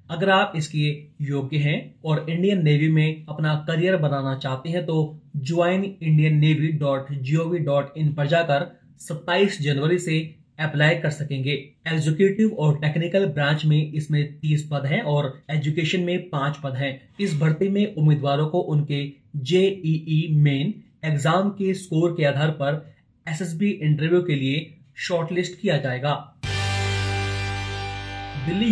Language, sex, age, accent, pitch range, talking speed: Hindi, male, 30-49, native, 140-170 Hz, 130 wpm